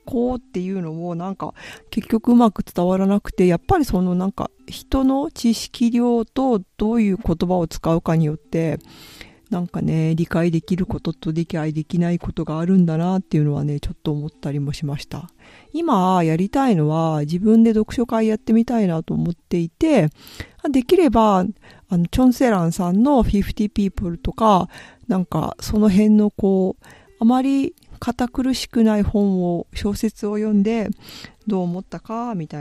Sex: female